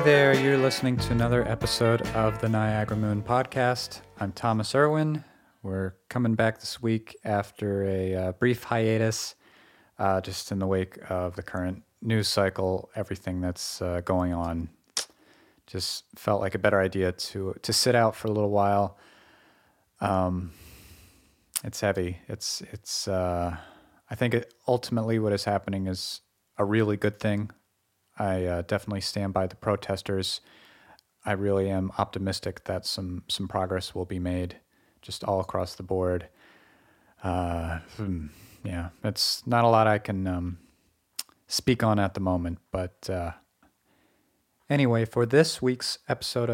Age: 40-59